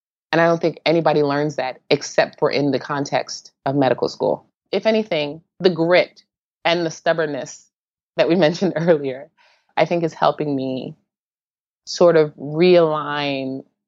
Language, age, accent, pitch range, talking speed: English, 20-39, American, 145-170 Hz, 145 wpm